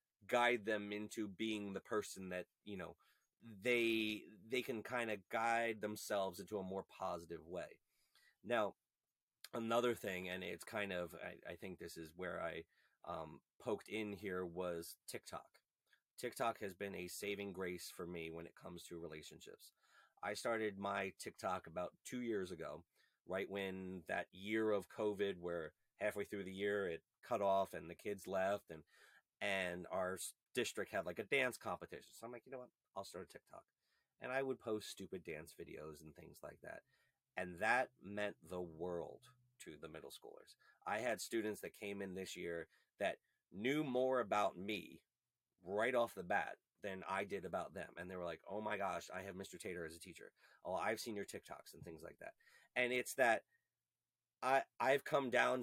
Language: English